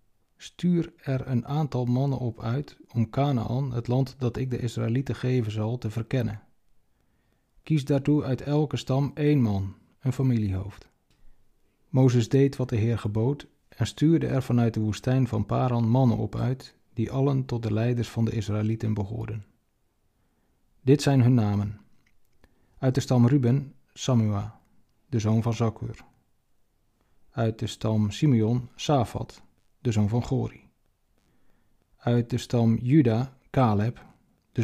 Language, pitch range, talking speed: Dutch, 110-130 Hz, 140 wpm